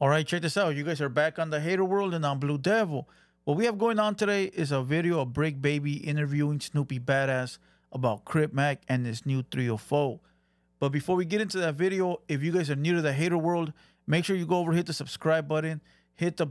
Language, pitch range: English, 135-165 Hz